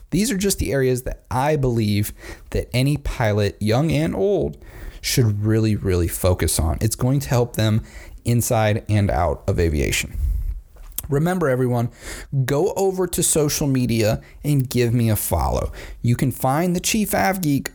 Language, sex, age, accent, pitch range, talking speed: English, male, 30-49, American, 95-140 Hz, 160 wpm